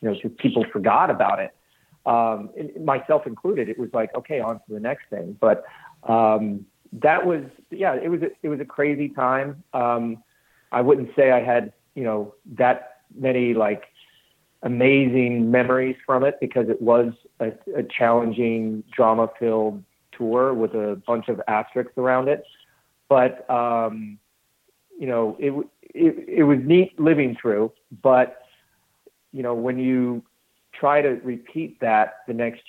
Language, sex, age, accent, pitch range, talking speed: English, male, 40-59, American, 110-130 Hz, 155 wpm